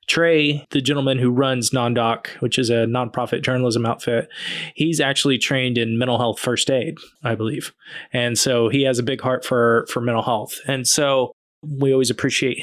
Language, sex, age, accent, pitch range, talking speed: English, male, 20-39, American, 120-140 Hz, 180 wpm